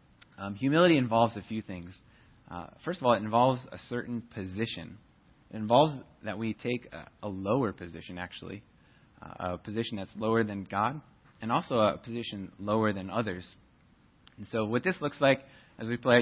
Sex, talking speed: male, 180 wpm